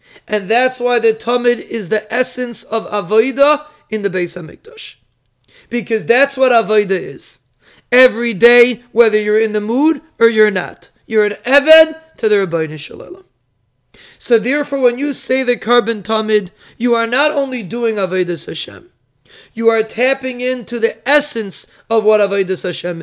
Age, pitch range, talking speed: 30-49, 205-255 Hz, 160 wpm